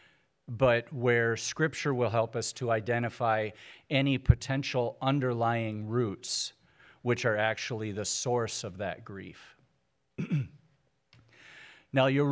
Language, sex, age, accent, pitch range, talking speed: English, male, 50-69, American, 110-130 Hz, 105 wpm